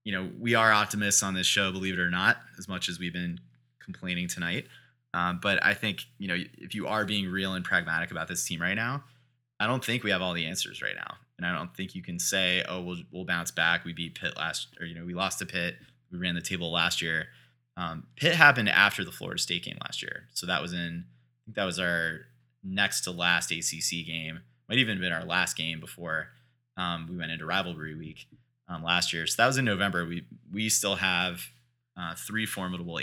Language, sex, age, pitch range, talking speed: English, male, 20-39, 85-105 Hz, 235 wpm